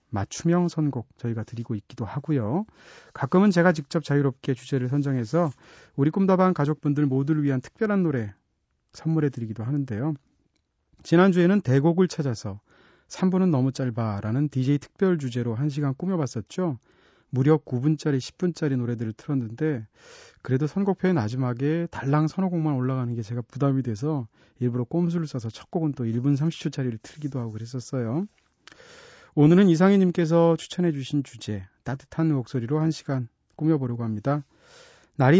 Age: 40-59